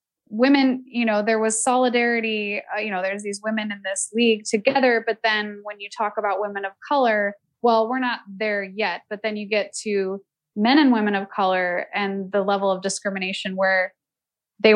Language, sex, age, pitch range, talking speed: English, female, 20-39, 190-235 Hz, 190 wpm